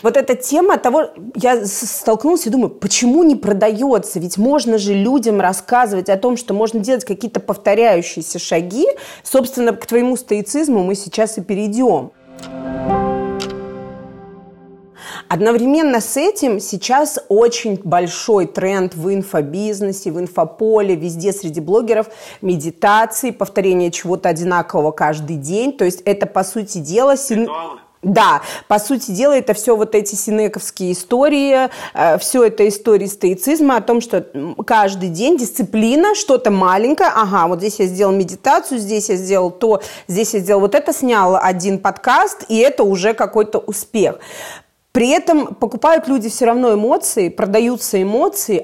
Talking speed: 140 wpm